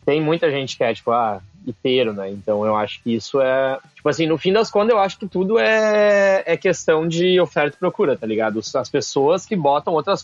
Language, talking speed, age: Portuguese, 230 wpm, 20-39